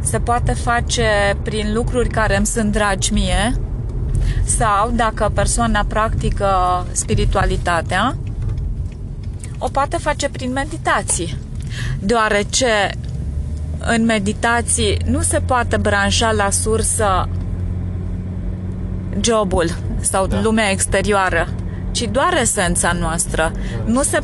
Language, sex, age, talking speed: Romanian, female, 20-39, 95 wpm